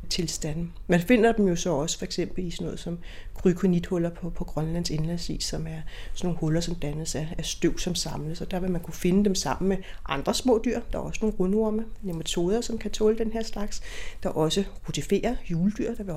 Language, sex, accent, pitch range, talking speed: Danish, female, native, 165-200 Hz, 225 wpm